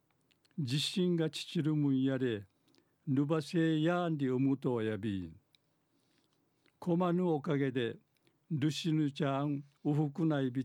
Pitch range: 140-160 Hz